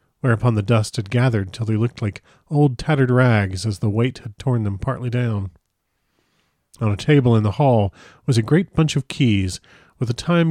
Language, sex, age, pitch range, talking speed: English, male, 40-59, 105-130 Hz, 200 wpm